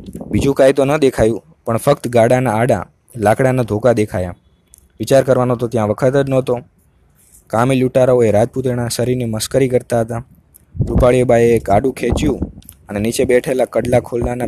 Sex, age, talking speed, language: male, 20-39, 135 wpm, Gujarati